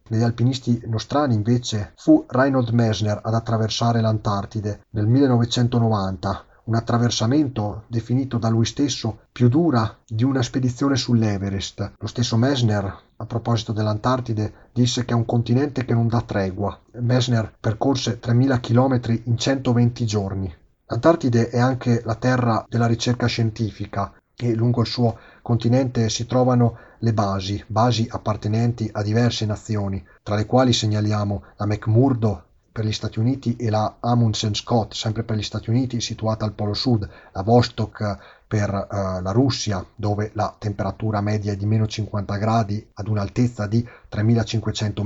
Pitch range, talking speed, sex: 105-120 Hz, 145 wpm, male